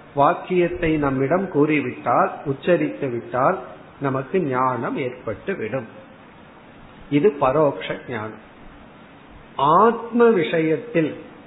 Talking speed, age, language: 60 wpm, 50-69, Tamil